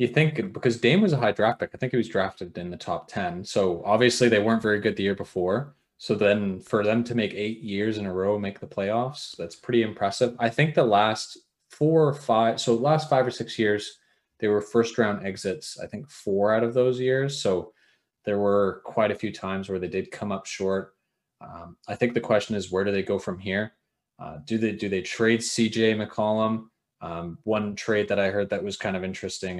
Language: English